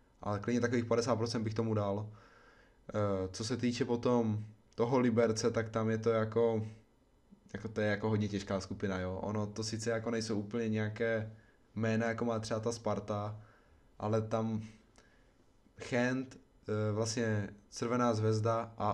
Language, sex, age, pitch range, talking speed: Czech, male, 20-39, 105-115 Hz, 145 wpm